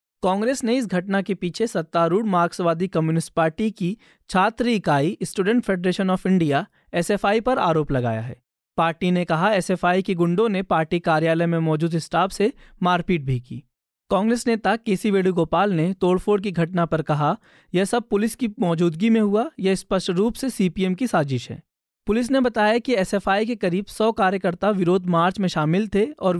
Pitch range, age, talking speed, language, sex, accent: 170-215 Hz, 20-39, 175 wpm, Hindi, male, native